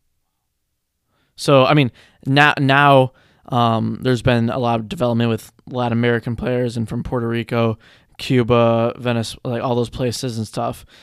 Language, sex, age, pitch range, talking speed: English, male, 20-39, 120-130 Hz, 150 wpm